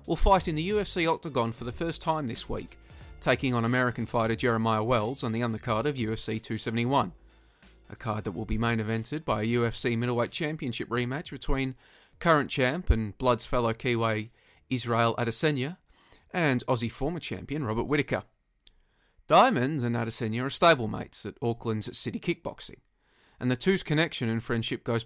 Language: English